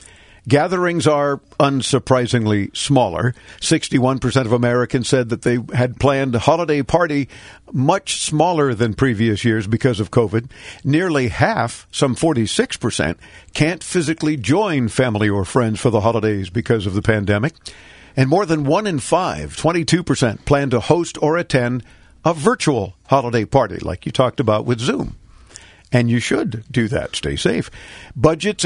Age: 50-69